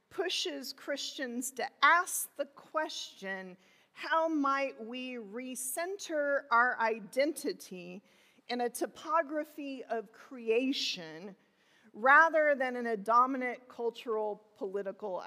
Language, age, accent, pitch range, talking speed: English, 40-59, American, 225-280 Hz, 95 wpm